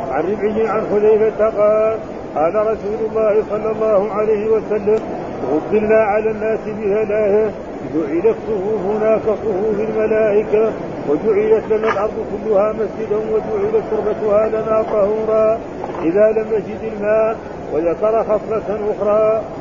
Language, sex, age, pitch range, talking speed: Arabic, male, 50-69, 210-220 Hz, 115 wpm